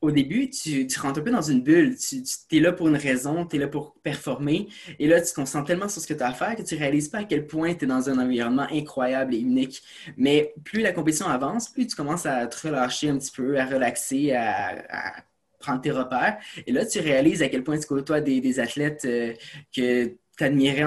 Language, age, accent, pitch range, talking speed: French, 20-39, Canadian, 135-160 Hz, 255 wpm